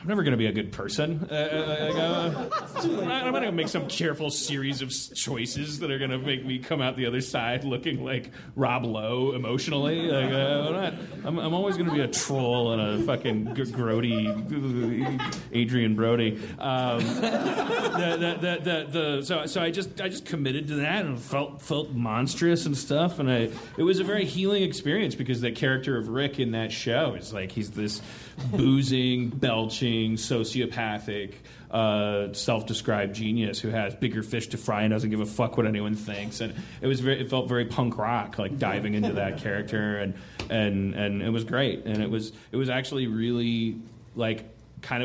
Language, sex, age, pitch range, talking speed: English, male, 30-49, 110-140 Hz, 190 wpm